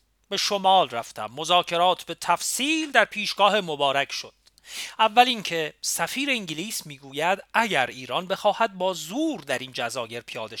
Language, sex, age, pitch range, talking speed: Persian, male, 40-59, 160-240 Hz, 135 wpm